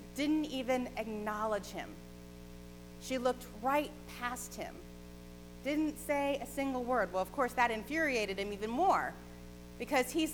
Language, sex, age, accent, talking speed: English, female, 30-49, American, 140 wpm